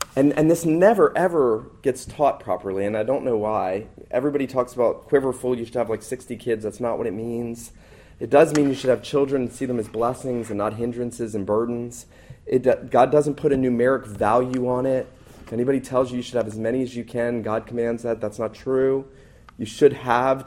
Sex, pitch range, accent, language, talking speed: male, 110-135 Hz, American, English, 220 wpm